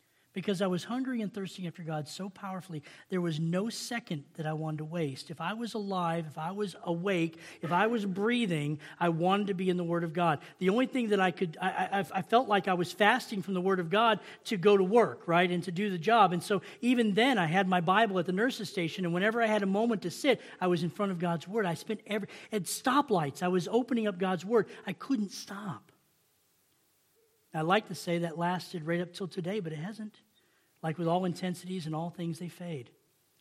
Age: 40-59